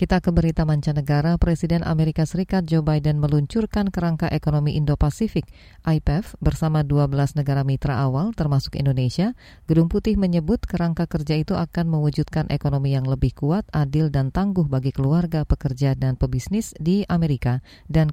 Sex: female